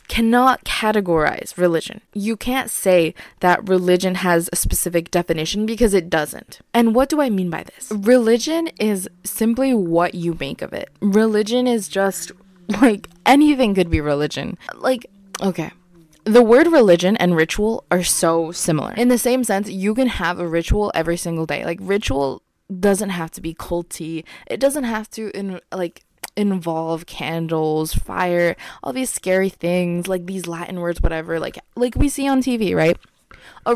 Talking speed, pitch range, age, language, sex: 165 wpm, 170-235 Hz, 20-39, English, female